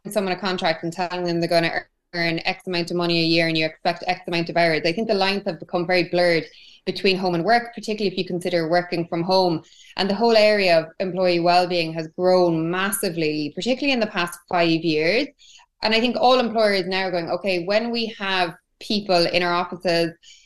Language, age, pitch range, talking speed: English, 20-39, 170-190 Hz, 215 wpm